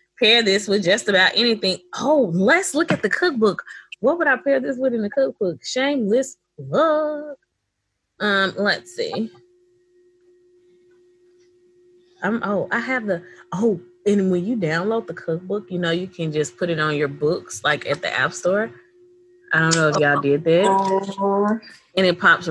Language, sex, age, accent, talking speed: English, female, 20-39, American, 170 wpm